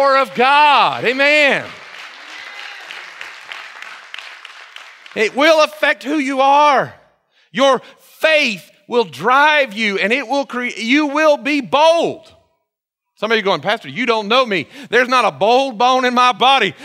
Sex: male